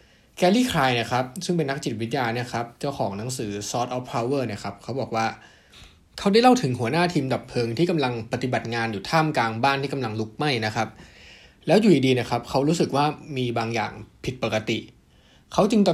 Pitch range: 115-150 Hz